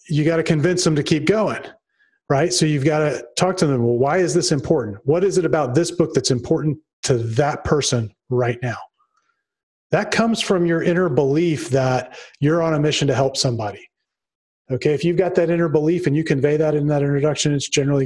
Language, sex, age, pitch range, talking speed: English, male, 30-49, 135-170 Hz, 215 wpm